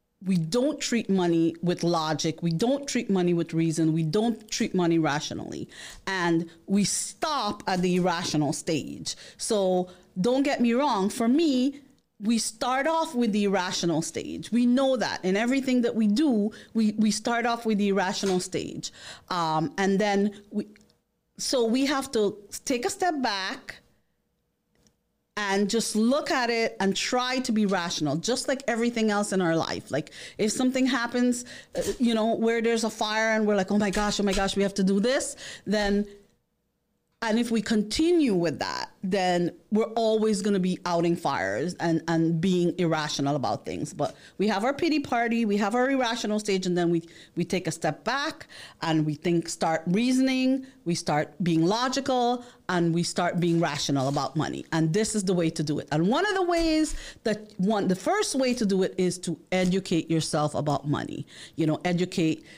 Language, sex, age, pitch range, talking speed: English, female, 40-59, 170-235 Hz, 185 wpm